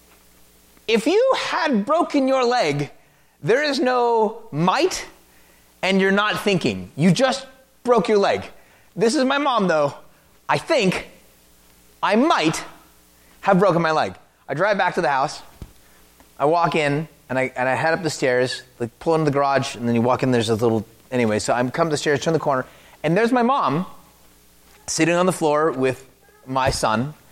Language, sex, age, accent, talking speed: English, male, 30-49, American, 180 wpm